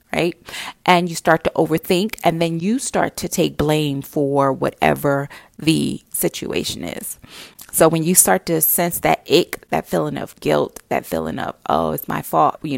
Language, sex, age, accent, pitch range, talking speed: English, female, 30-49, American, 140-205 Hz, 180 wpm